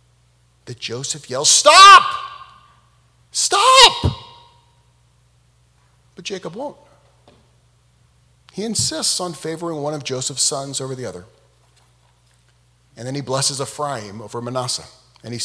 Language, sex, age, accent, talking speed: English, male, 40-59, American, 110 wpm